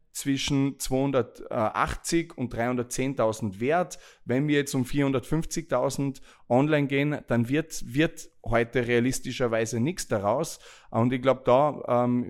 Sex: male